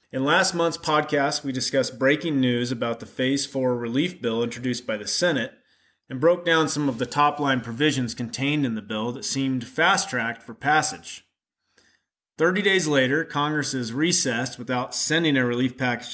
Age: 30-49